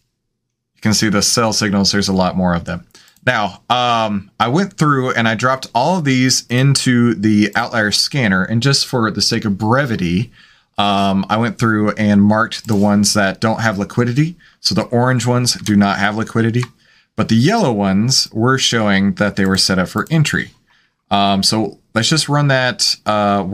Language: English